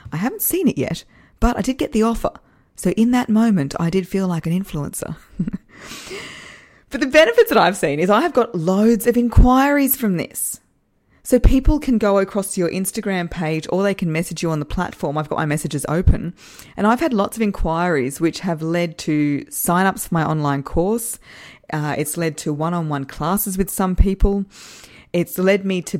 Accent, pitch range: Australian, 160-215 Hz